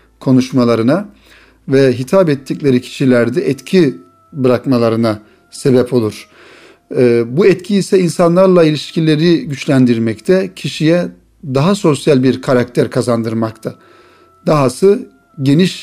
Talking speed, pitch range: 85 wpm, 125-160 Hz